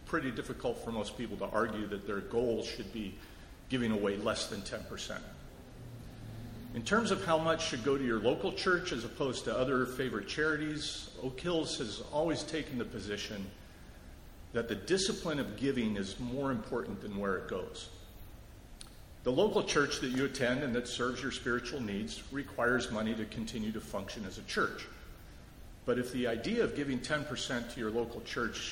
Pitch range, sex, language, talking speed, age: 105-140 Hz, male, English, 180 wpm, 50-69